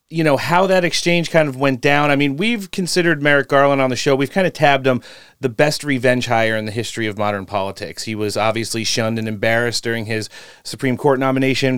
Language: English